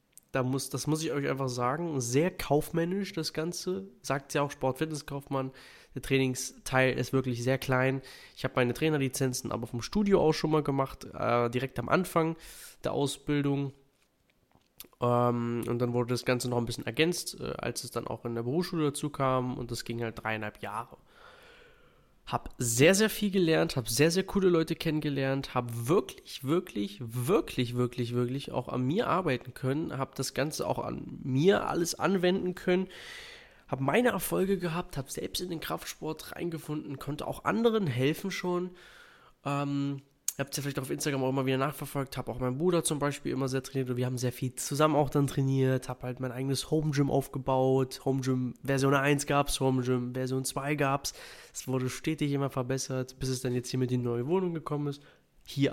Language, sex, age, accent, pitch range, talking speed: German, male, 20-39, German, 125-155 Hz, 185 wpm